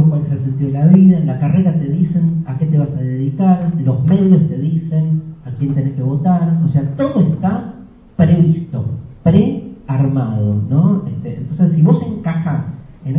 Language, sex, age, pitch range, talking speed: Spanish, male, 40-59, 135-170 Hz, 180 wpm